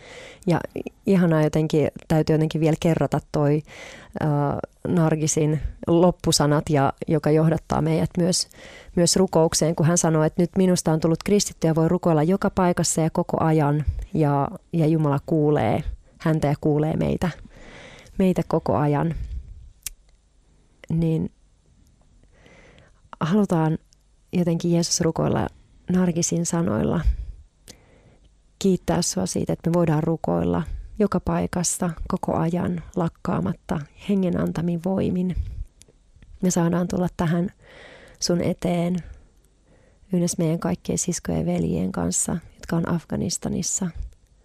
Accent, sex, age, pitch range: native, female, 30-49, 150-175 Hz